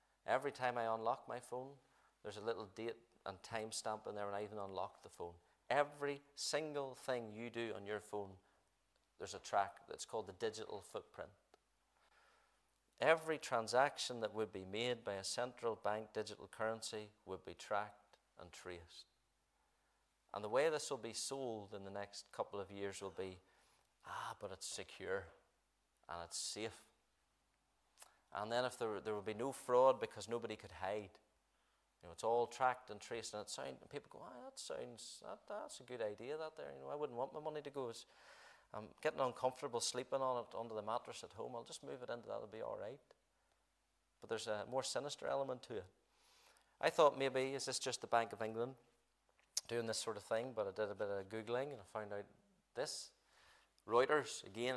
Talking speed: 195 wpm